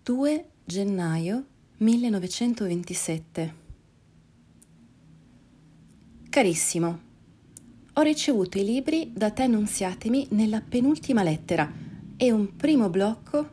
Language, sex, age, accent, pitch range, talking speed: Italian, female, 30-49, native, 165-230 Hz, 80 wpm